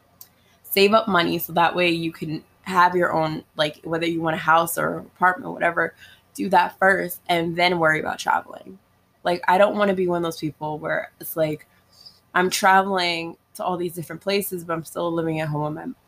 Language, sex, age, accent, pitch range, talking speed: English, female, 20-39, American, 150-180 Hz, 215 wpm